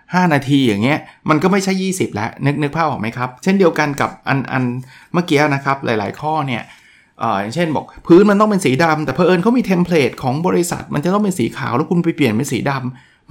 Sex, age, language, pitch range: male, 20-39, Thai, 120-155 Hz